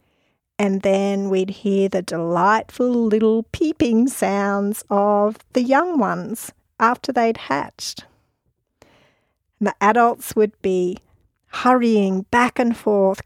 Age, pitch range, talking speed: 50-69, 195-245 Hz, 110 wpm